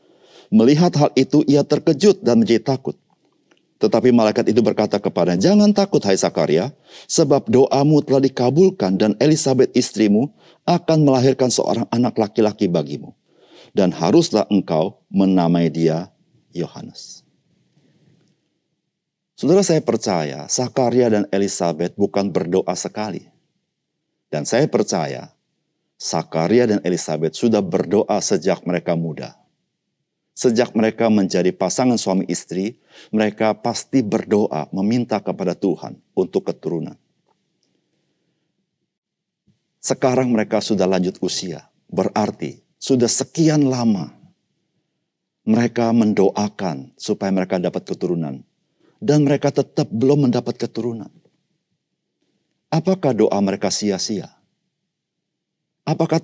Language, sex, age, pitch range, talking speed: Indonesian, male, 50-69, 100-150 Hz, 100 wpm